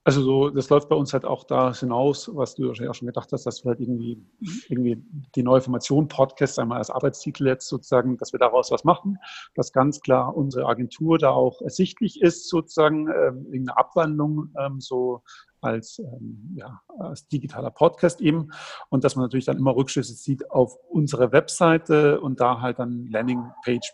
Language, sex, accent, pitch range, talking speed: German, male, German, 125-150 Hz, 180 wpm